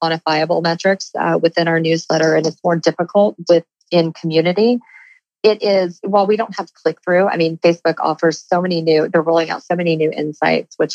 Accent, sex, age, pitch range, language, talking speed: American, female, 40-59, 155-185 Hz, English, 190 wpm